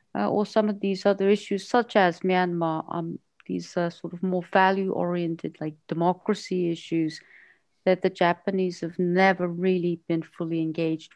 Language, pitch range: English, 170-205 Hz